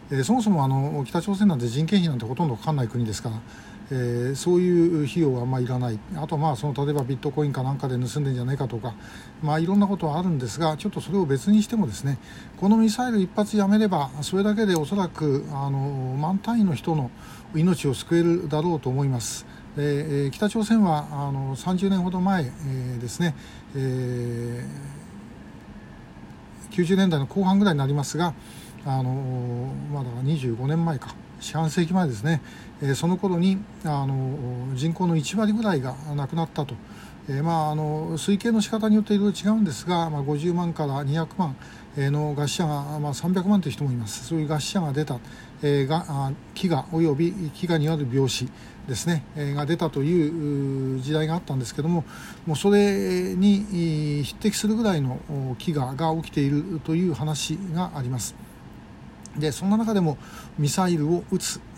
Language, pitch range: Japanese, 135-180 Hz